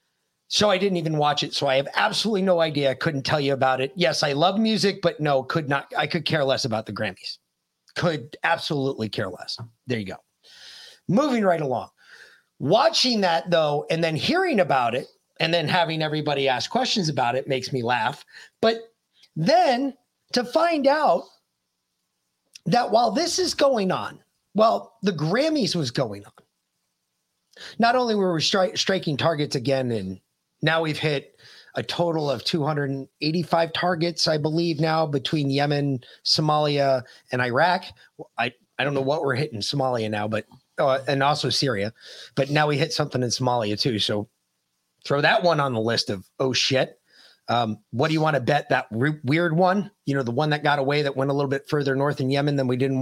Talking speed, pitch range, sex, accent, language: 190 wpm, 130-170 Hz, male, American, English